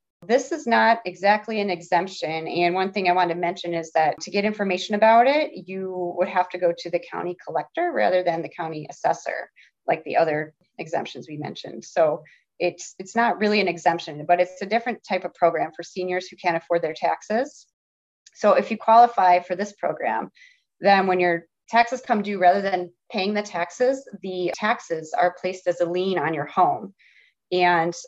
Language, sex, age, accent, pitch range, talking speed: English, female, 30-49, American, 170-205 Hz, 190 wpm